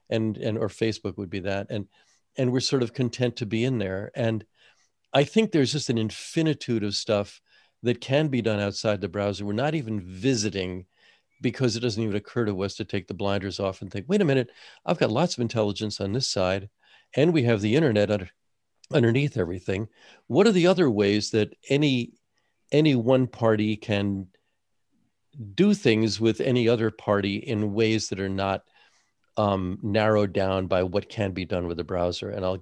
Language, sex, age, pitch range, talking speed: English, male, 50-69, 95-115 Hz, 195 wpm